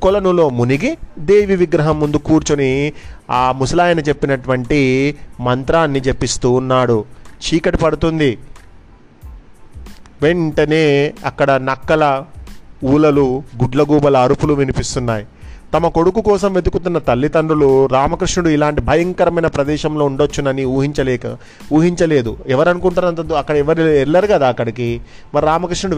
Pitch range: 130-155 Hz